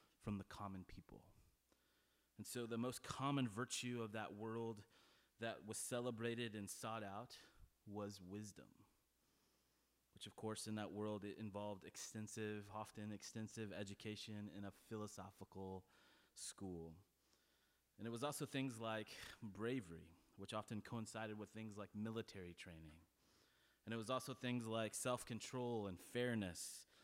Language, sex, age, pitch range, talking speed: English, male, 30-49, 100-125 Hz, 135 wpm